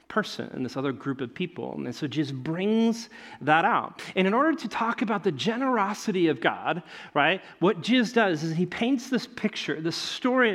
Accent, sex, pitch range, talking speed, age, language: American, male, 165-230 Hz, 195 wpm, 40-59, English